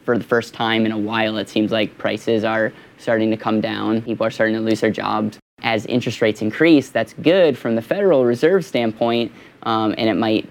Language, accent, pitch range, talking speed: English, American, 110-120 Hz, 215 wpm